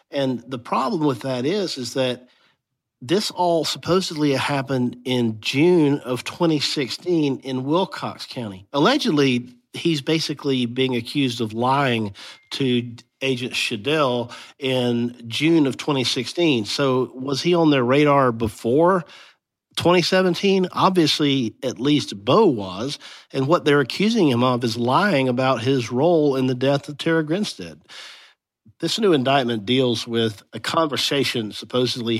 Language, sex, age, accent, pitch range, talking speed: English, male, 50-69, American, 120-145 Hz, 130 wpm